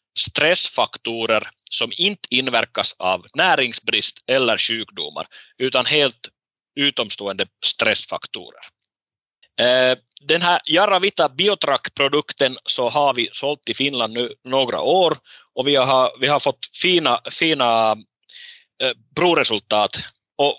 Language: Finnish